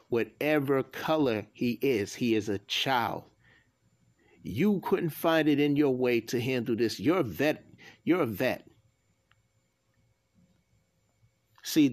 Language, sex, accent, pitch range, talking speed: English, male, American, 105-140 Hz, 125 wpm